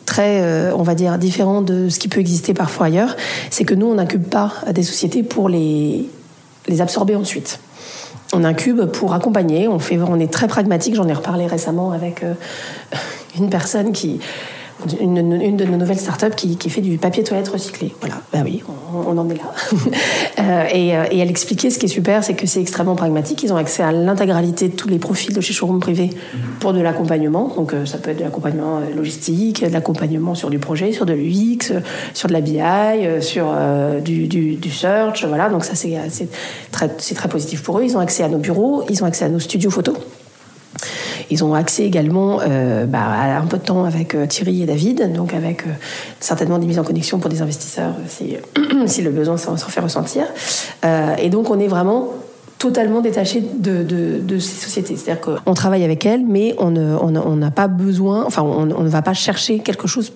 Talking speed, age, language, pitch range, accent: 210 wpm, 40-59, French, 165-200 Hz, French